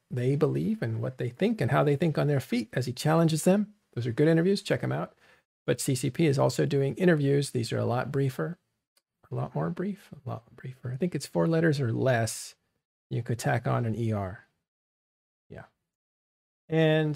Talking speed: 200 wpm